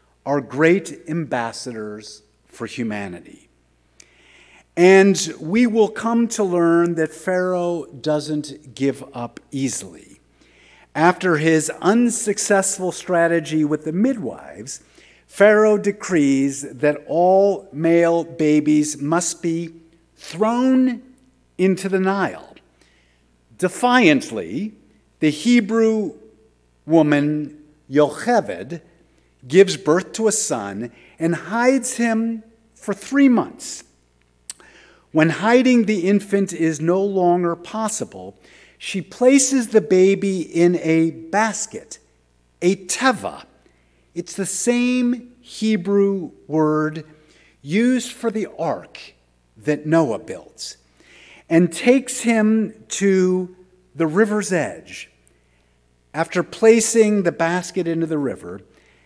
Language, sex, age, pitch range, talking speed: English, male, 50-69, 150-210 Hz, 95 wpm